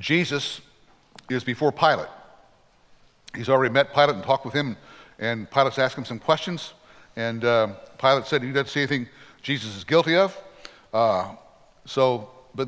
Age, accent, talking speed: 60-79, American, 155 wpm